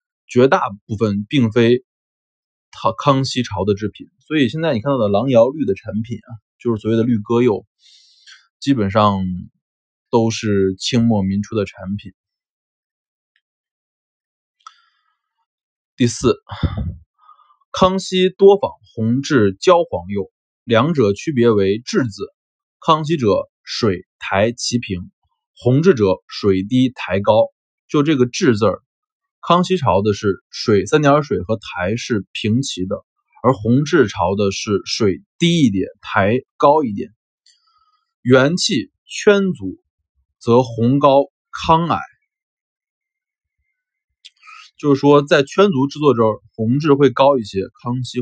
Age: 20-39